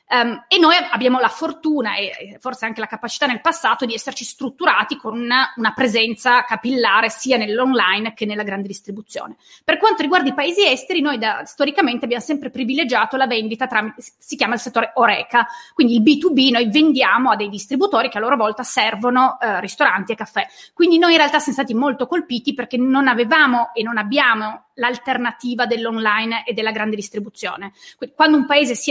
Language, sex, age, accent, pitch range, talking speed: Italian, female, 30-49, native, 225-285 Hz, 175 wpm